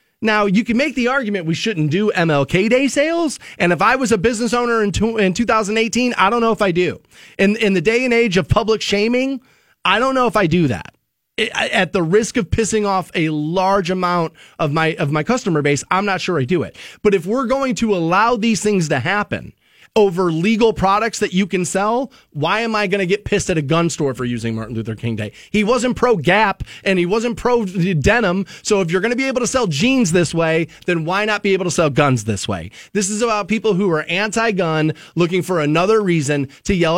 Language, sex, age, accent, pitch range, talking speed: English, male, 30-49, American, 160-225 Hz, 230 wpm